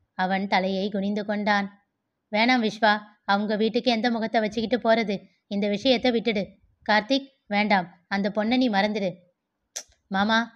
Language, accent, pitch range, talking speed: Tamil, native, 200-235 Hz, 120 wpm